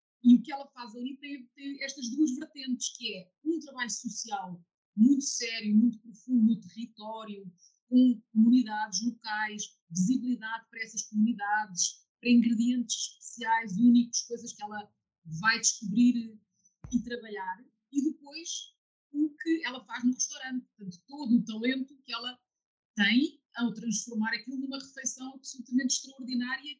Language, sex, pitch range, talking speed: Portuguese, female, 210-255 Hz, 140 wpm